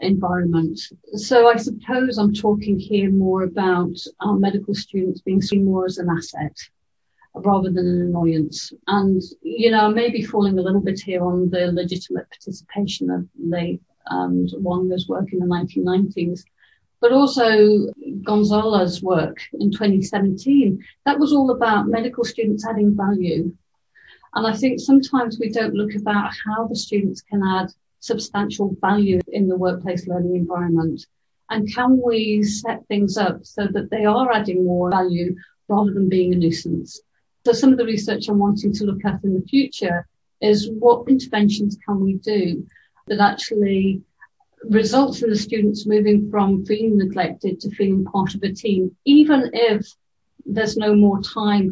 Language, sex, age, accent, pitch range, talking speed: English, female, 40-59, British, 185-215 Hz, 160 wpm